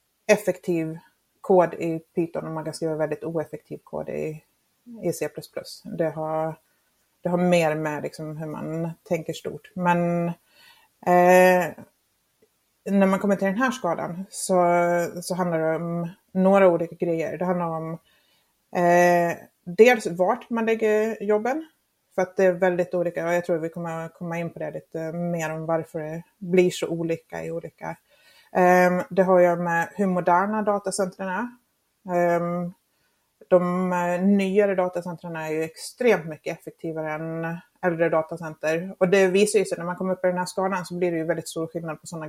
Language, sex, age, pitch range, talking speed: Swedish, female, 30-49, 165-190 Hz, 165 wpm